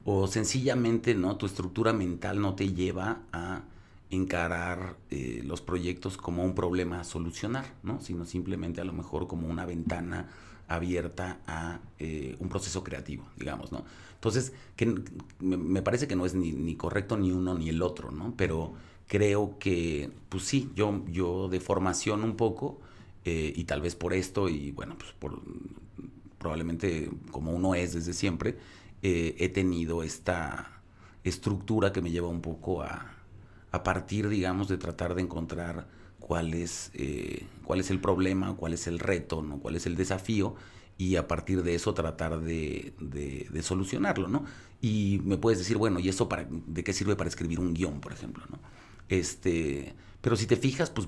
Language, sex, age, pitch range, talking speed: Spanish, male, 40-59, 85-100 Hz, 175 wpm